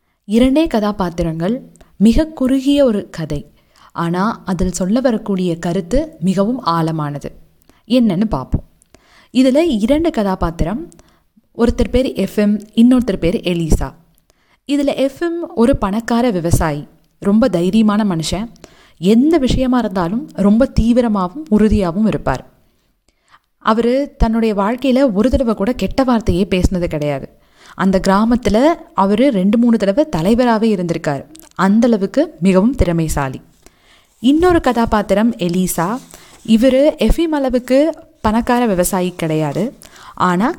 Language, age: Tamil, 20-39